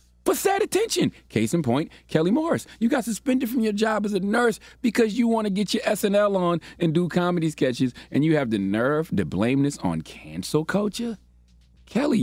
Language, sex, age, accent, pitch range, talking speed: English, male, 30-49, American, 120-190 Hz, 200 wpm